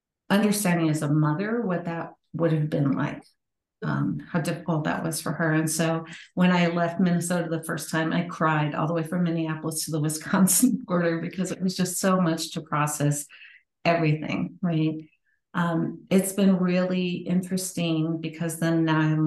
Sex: female